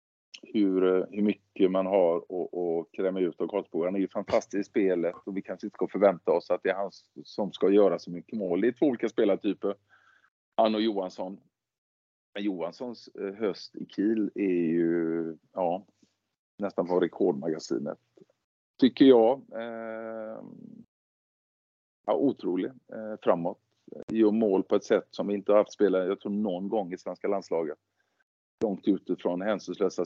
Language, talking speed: Swedish, 160 wpm